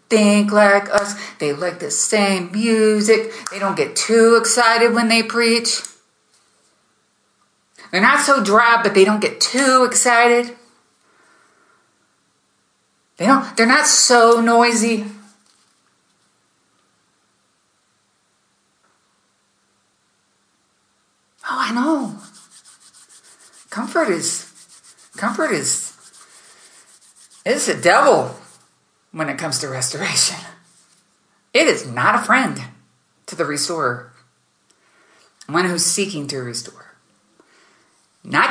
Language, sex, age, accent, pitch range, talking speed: English, female, 50-69, American, 185-235 Hz, 95 wpm